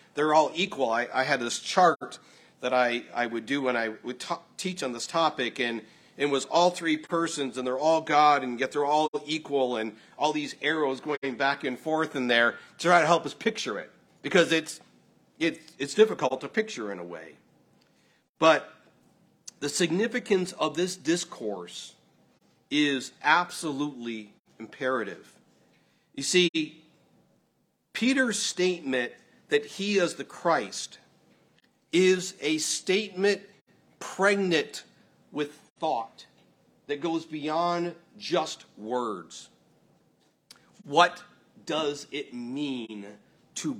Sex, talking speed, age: male, 135 wpm, 50-69